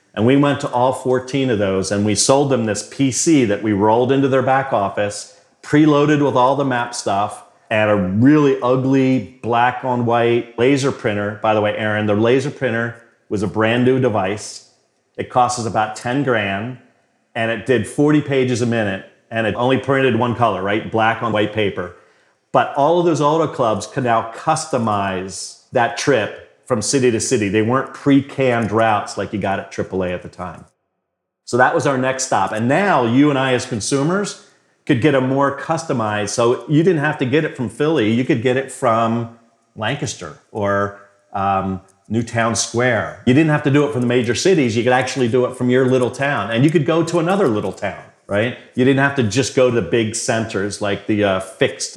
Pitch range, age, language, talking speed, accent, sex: 105-135 Hz, 40-59, English, 205 wpm, American, male